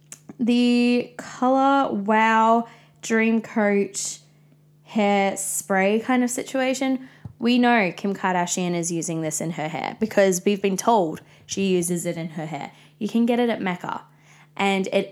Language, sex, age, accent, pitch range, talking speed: English, female, 20-39, Australian, 180-220 Hz, 150 wpm